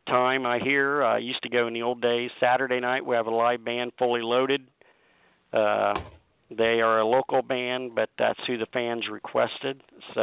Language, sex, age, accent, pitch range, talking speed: English, male, 50-69, American, 115-135 Hz, 200 wpm